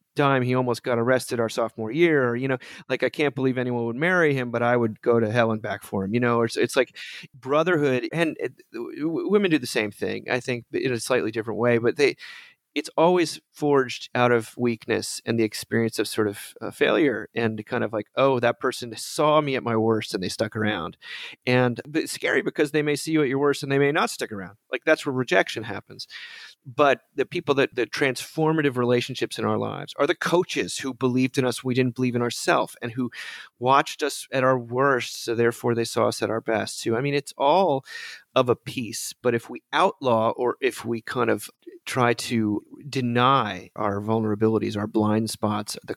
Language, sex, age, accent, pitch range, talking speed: English, male, 30-49, American, 115-145 Hz, 215 wpm